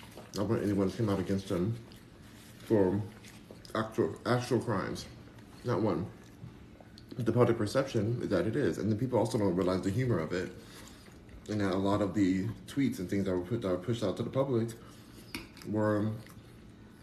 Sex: male